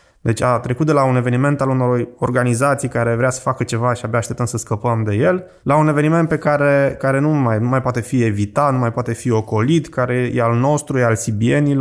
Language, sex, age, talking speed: Romanian, male, 20-39, 240 wpm